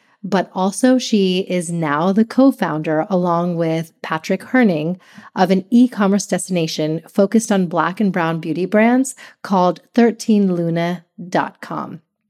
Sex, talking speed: female, 115 wpm